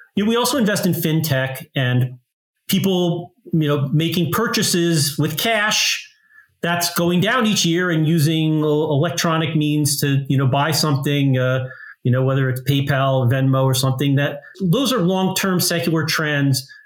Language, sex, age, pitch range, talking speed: English, male, 40-59, 130-170 Hz, 155 wpm